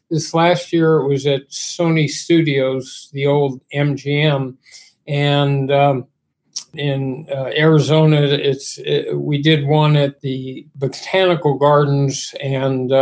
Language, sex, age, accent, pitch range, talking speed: English, male, 50-69, American, 135-155 Hz, 120 wpm